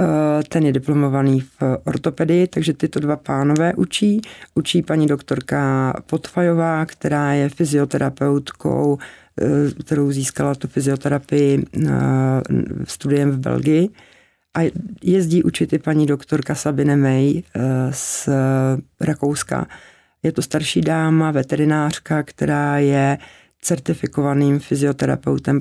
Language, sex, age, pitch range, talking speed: Czech, female, 60-79, 140-165 Hz, 100 wpm